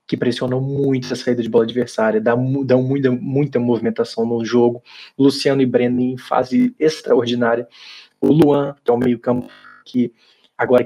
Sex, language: male, Portuguese